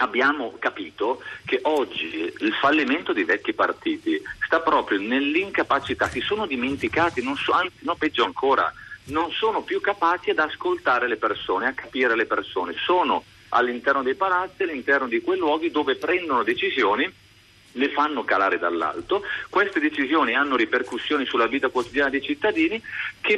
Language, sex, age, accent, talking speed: Italian, male, 50-69, native, 150 wpm